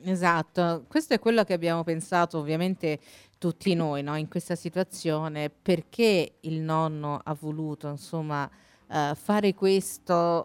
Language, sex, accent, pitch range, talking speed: Italian, female, native, 150-170 Hz, 130 wpm